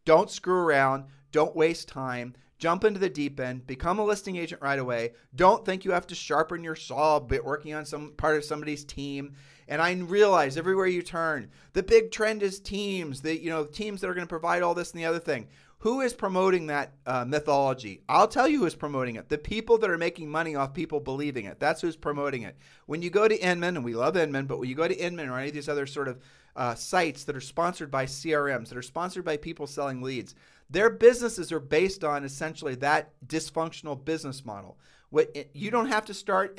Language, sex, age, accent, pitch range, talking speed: English, male, 40-59, American, 140-175 Hz, 225 wpm